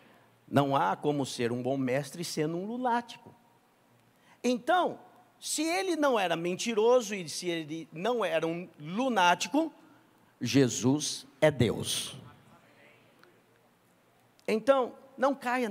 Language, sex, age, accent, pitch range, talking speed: English, male, 50-69, Brazilian, 160-250 Hz, 110 wpm